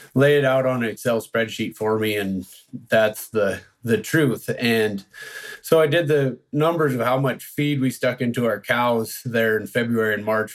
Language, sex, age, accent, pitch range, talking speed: English, male, 30-49, American, 110-135 Hz, 195 wpm